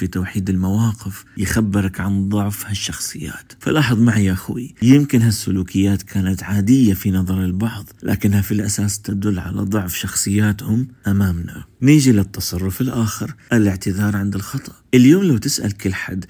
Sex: male